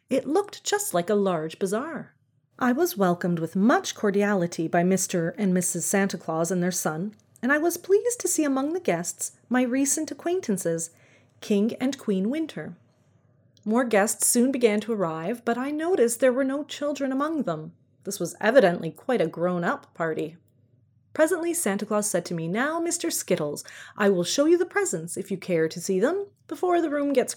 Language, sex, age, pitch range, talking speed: English, female, 30-49, 170-265 Hz, 185 wpm